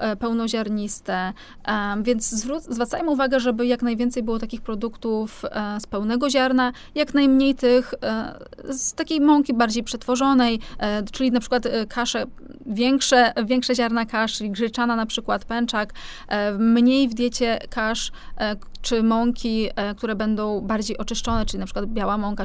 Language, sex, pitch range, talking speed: Polish, female, 220-255 Hz, 130 wpm